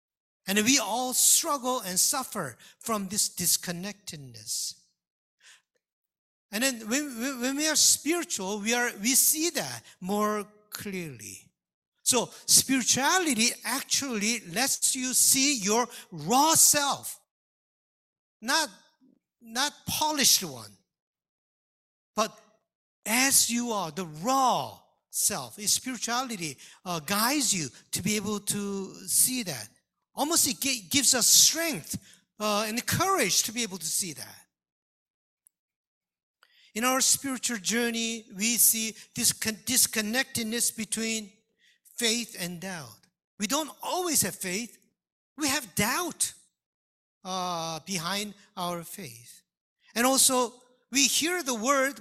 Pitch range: 190-260 Hz